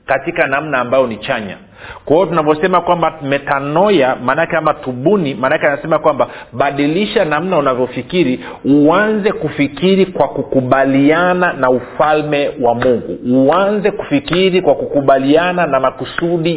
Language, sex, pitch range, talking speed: Swahili, male, 130-165 Hz, 135 wpm